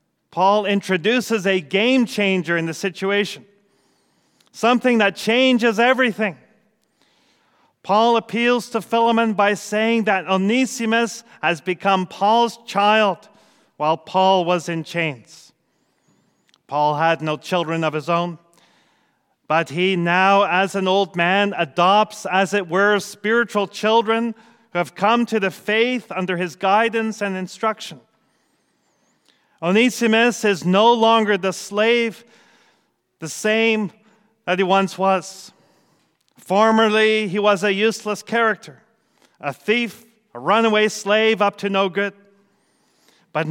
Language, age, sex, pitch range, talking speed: English, 40-59, male, 185-225 Hz, 120 wpm